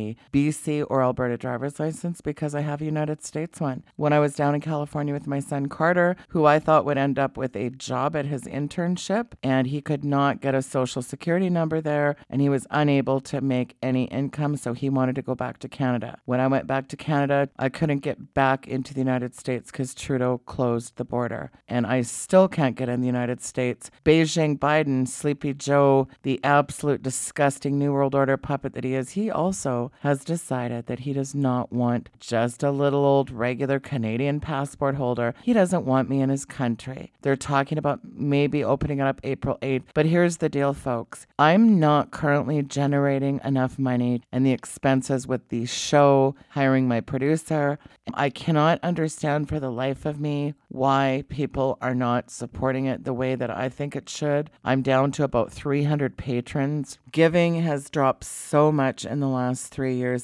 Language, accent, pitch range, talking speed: English, American, 130-150 Hz, 190 wpm